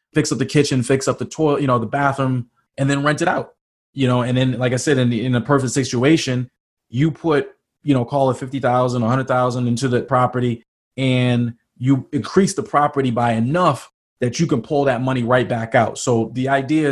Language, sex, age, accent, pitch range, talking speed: English, male, 20-39, American, 120-135 Hz, 215 wpm